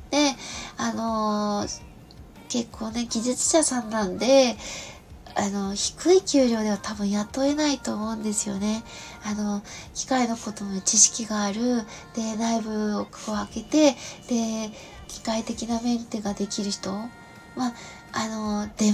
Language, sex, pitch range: Japanese, female, 215-260 Hz